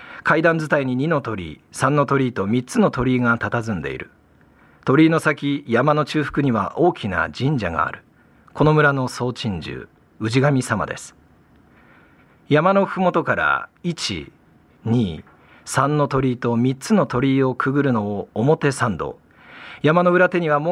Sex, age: male, 40-59